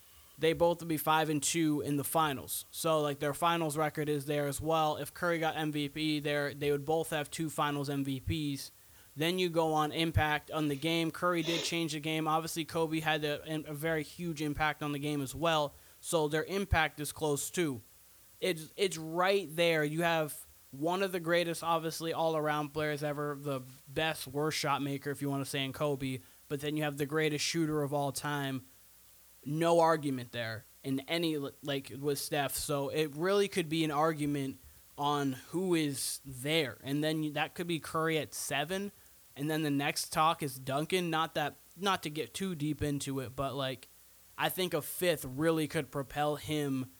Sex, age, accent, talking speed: male, 20-39, American, 195 wpm